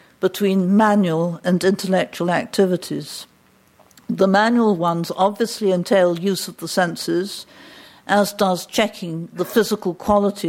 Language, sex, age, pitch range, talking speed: English, female, 60-79, 175-215 Hz, 115 wpm